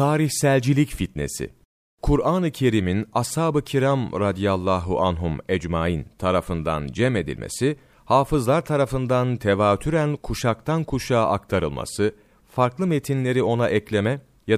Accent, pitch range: native, 105-140 Hz